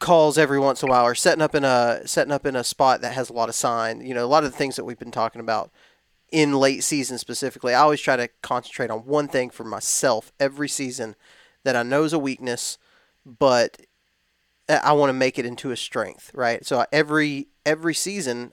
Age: 30-49